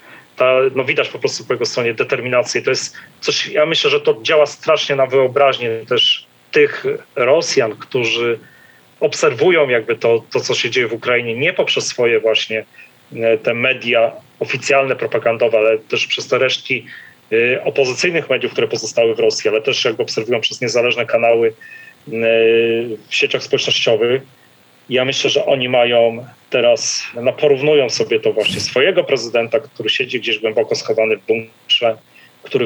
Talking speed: 150 wpm